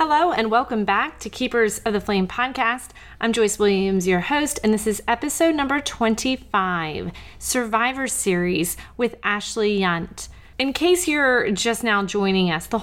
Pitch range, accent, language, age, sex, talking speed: 200-255 Hz, American, English, 30-49, female, 160 wpm